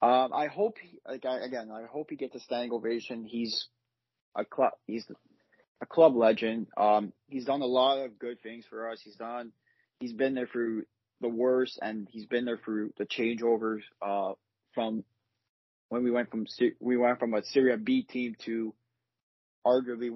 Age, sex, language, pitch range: 20-39, male, English, 110-125 Hz